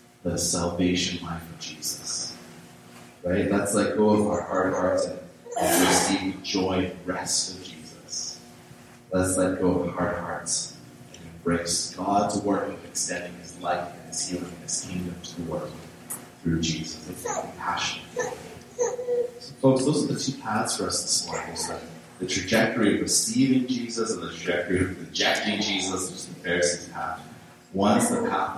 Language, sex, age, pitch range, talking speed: English, male, 30-49, 85-100 Hz, 170 wpm